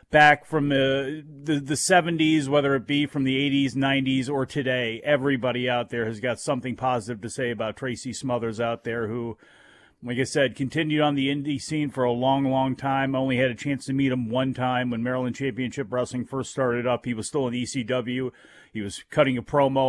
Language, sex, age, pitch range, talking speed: English, male, 40-59, 125-140 Hz, 210 wpm